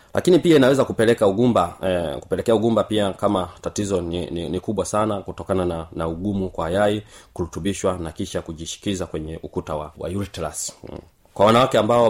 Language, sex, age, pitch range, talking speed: Swahili, male, 30-49, 95-120 Hz, 170 wpm